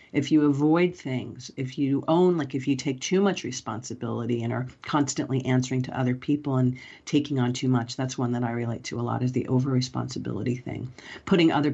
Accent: American